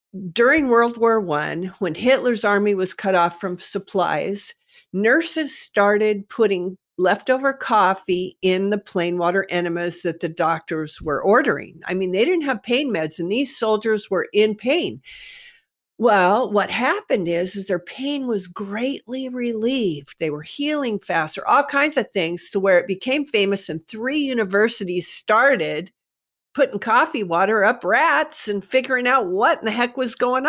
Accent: American